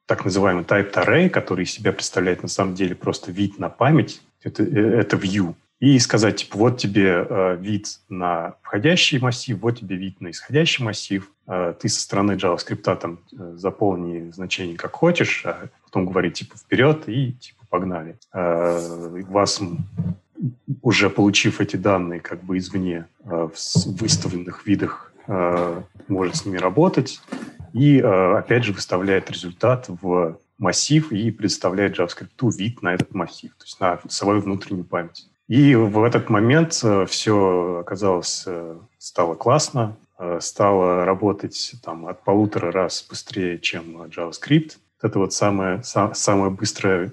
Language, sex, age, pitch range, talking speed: Russian, male, 30-49, 90-110 Hz, 145 wpm